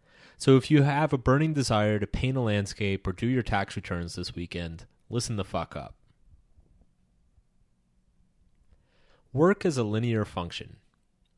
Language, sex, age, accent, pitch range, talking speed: English, male, 30-49, American, 90-125 Hz, 140 wpm